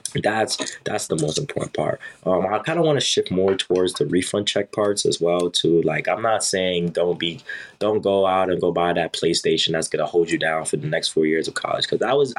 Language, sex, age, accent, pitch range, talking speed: English, male, 20-39, American, 80-105 Hz, 245 wpm